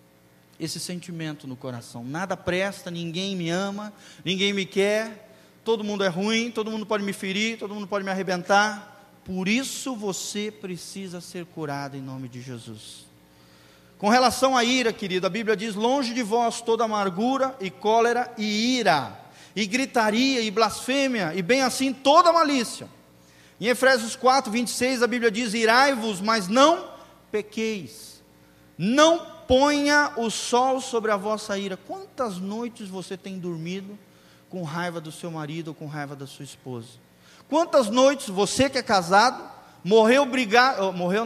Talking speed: 155 wpm